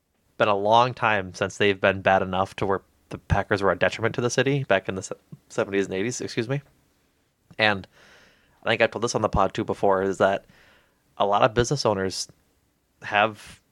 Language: English